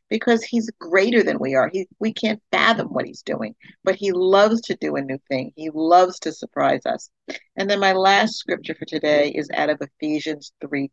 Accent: American